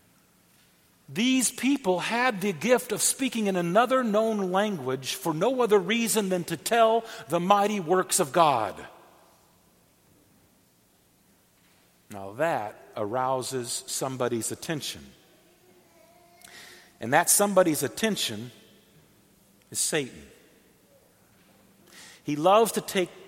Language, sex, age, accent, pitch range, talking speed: English, male, 50-69, American, 160-240 Hz, 100 wpm